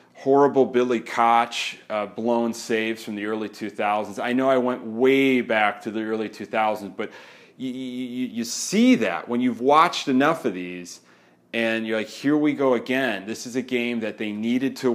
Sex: male